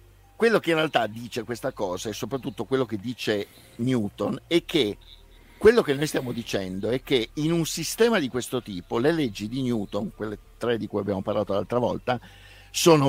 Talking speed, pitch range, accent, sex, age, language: 190 wpm, 105-140 Hz, native, male, 50-69, Italian